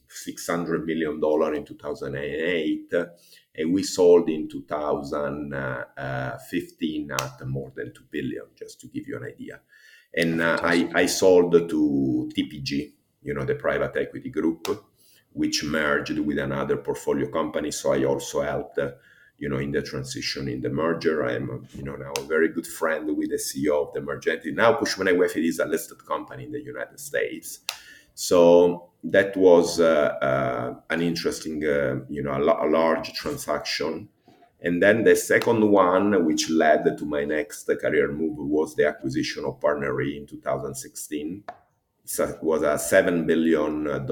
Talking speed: 175 wpm